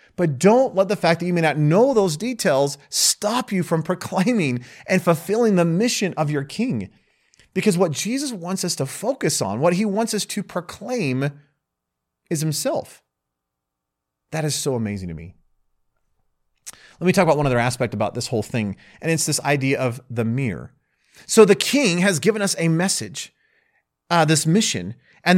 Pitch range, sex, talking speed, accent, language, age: 125-190 Hz, male, 175 wpm, American, English, 30-49